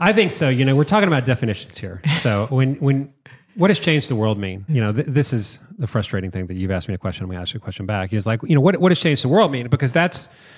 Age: 30-49